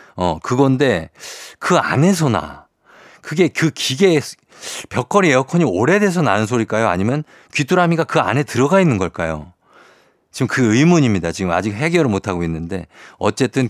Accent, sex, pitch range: native, male, 105-150 Hz